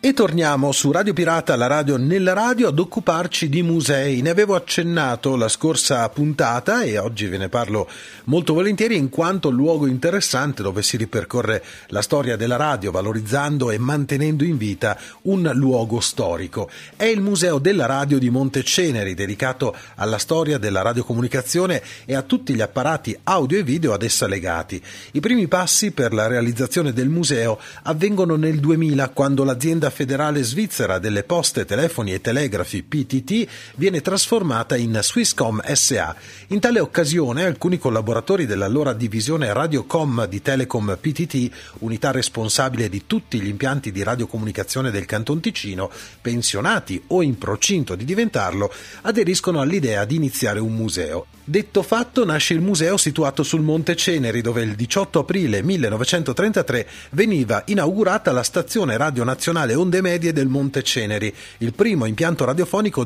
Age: 40-59